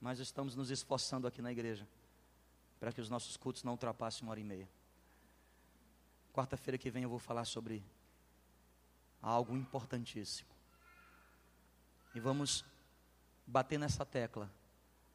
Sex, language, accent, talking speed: male, Portuguese, Brazilian, 125 wpm